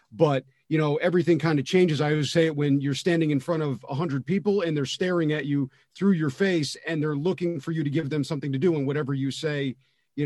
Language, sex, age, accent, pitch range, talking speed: English, male, 40-59, American, 145-175 Hz, 250 wpm